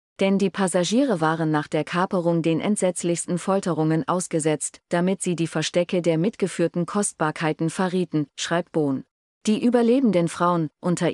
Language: German